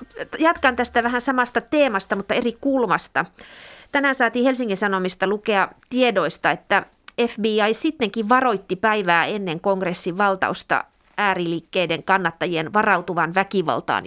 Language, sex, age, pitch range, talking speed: Finnish, female, 30-49, 180-240 Hz, 110 wpm